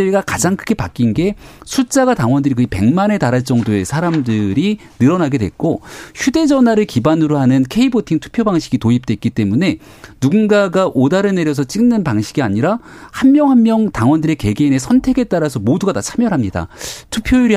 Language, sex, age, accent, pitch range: Korean, male, 40-59, native, 120-195 Hz